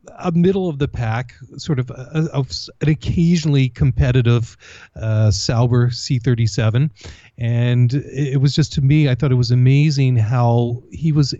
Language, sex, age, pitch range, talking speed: English, male, 30-49, 115-135 Hz, 140 wpm